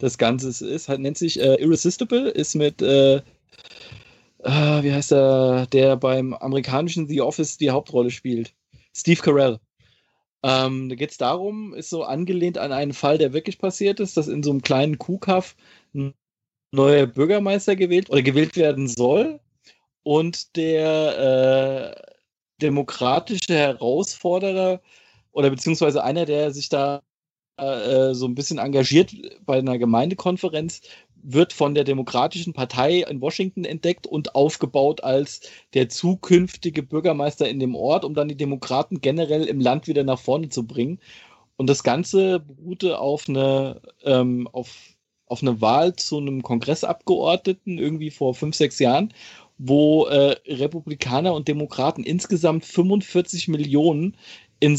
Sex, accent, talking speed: male, German, 135 wpm